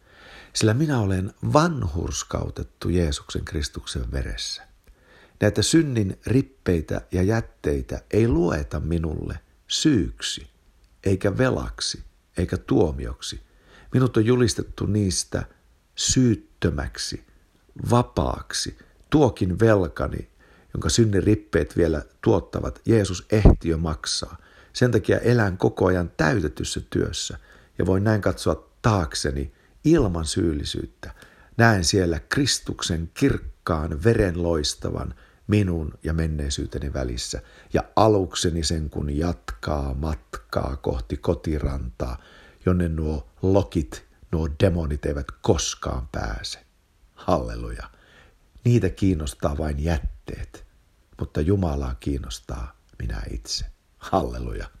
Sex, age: male, 60-79